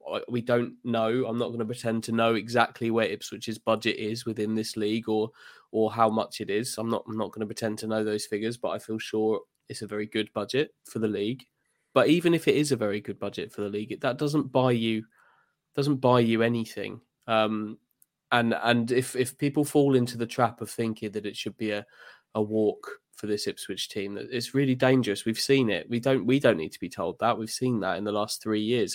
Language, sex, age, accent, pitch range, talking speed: English, male, 20-39, British, 110-120 Hz, 240 wpm